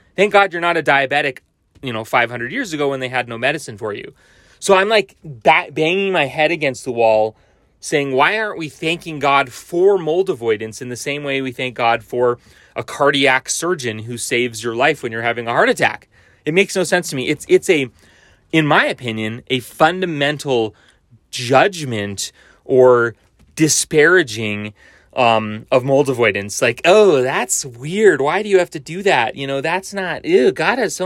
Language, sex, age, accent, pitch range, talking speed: English, male, 30-49, American, 115-165 Hz, 190 wpm